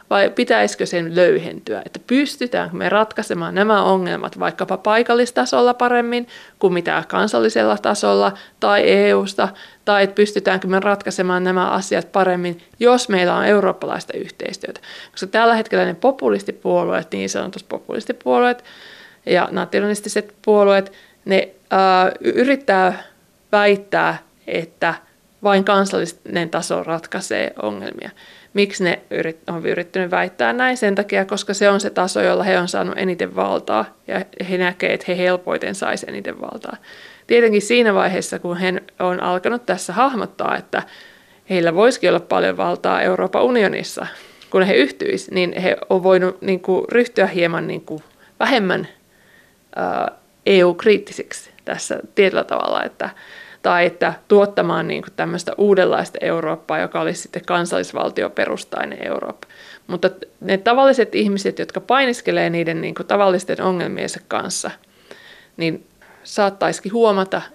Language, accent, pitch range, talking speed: Finnish, native, 180-210 Hz, 125 wpm